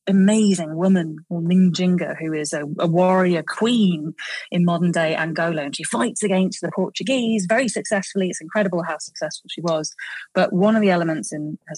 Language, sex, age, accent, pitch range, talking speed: English, female, 30-49, British, 165-200 Hz, 180 wpm